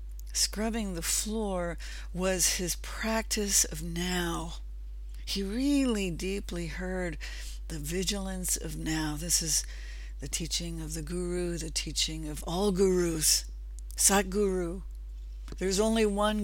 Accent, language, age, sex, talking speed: American, English, 60-79, female, 115 wpm